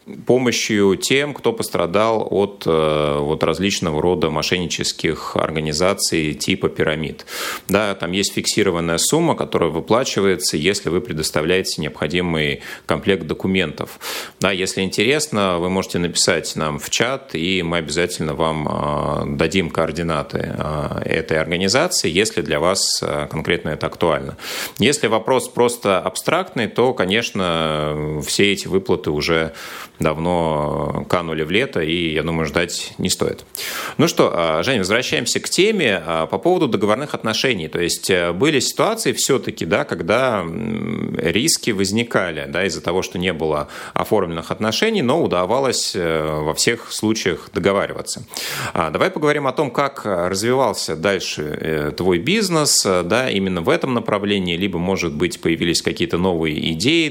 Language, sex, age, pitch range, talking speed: Russian, male, 30-49, 80-100 Hz, 125 wpm